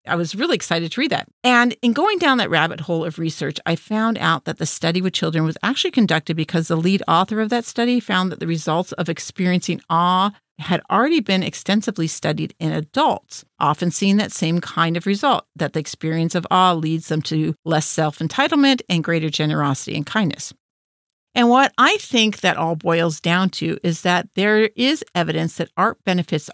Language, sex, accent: English, female, American